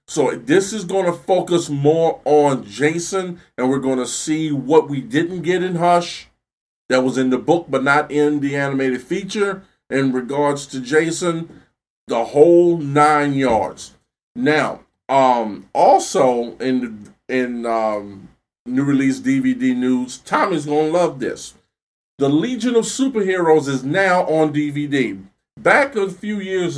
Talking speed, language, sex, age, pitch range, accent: 150 wpm, English, male, 40-59, 130-170 Hz, American